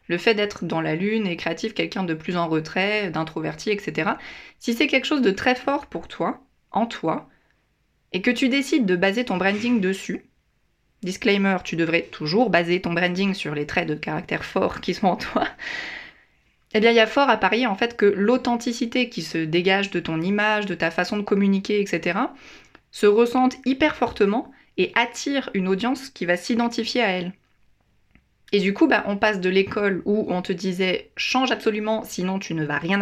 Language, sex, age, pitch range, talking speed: French, female, 20-39, 185-240 Hz, 195 wpm